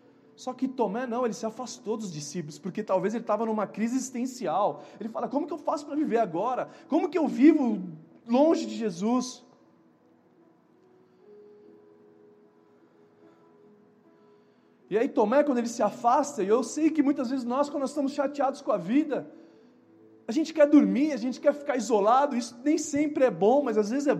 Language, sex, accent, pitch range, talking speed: Portuguese, male, Brazilian, 180-260 Hz, 175 wpm